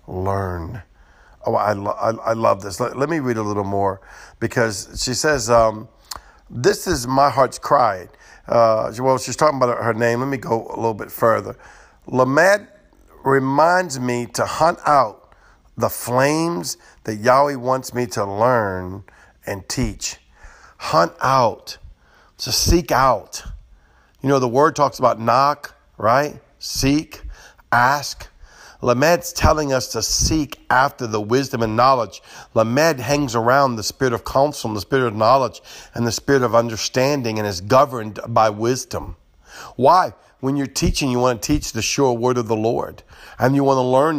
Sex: male